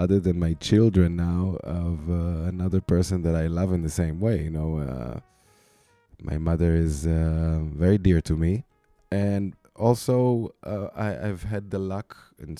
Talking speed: 170 wpm